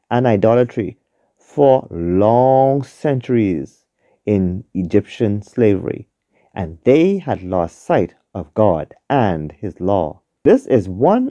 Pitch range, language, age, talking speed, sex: 90-120 Hz, English, 40-59, 110 wpm, male